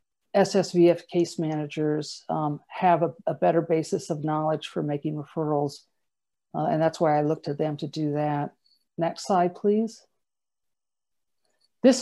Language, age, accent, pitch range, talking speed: English, 50-69, American, 165-195 Hz, 145 wpm